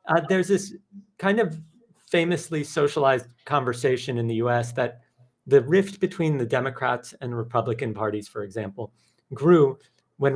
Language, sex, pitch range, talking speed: English, male, 120-160 Hz, 140 wpm